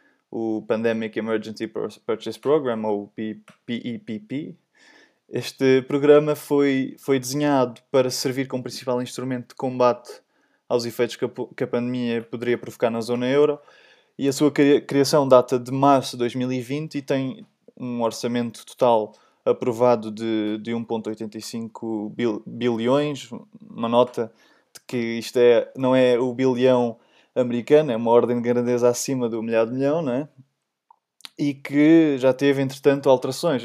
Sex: male